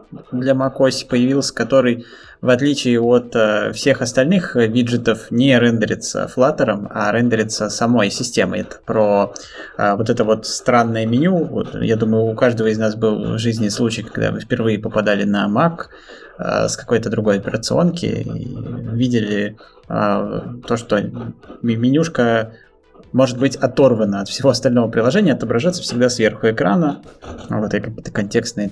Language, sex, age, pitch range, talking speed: Russian, male, 20-39, 110-130 Hz, 140 wpm